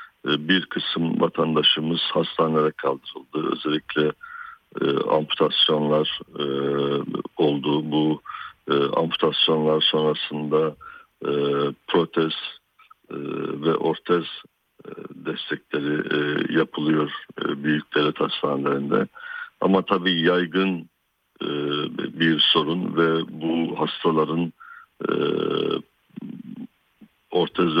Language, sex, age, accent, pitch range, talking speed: Turkish, male, 60-79, native, 75-85 Hz, 80 wpm